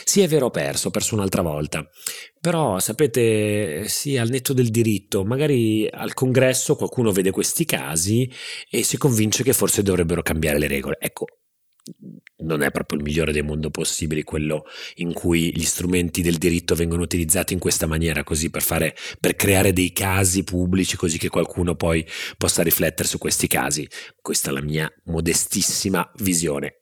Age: 30-49